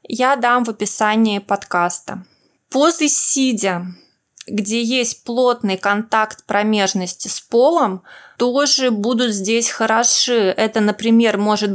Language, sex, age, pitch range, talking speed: Russian, female, 20-39, 200-255 Hz, 105 wpm